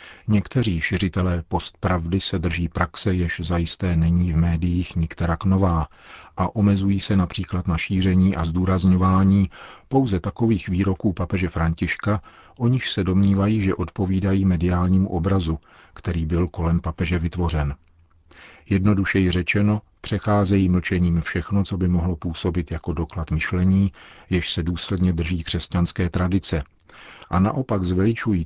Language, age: Czech, 40-59